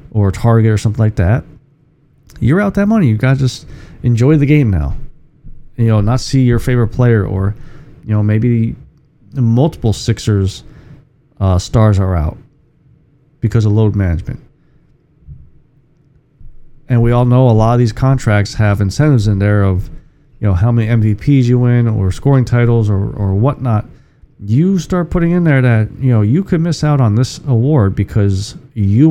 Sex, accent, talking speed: male, American, 170 wpm